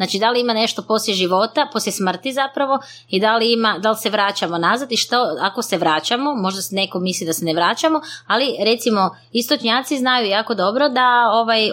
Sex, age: female, 20-39